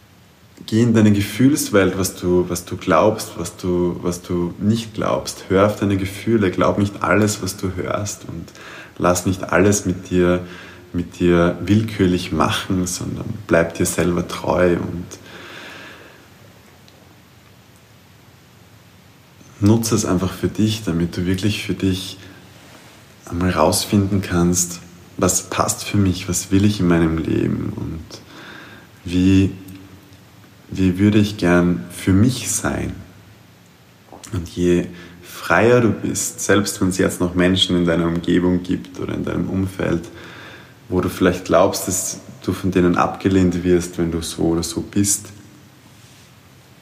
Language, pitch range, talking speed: German, 90-105 Hz, 140 wpm